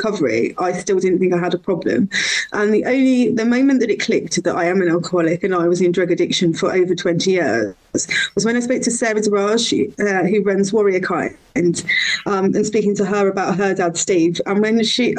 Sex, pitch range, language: female, 190-255 Hz, English